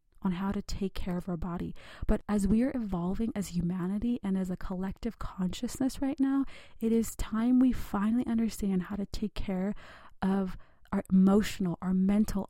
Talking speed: 180 wpm